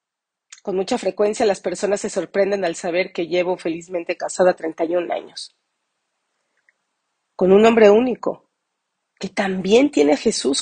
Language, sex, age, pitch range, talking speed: Spanish, female, 40-59, 180-210 Hz, 135 wpm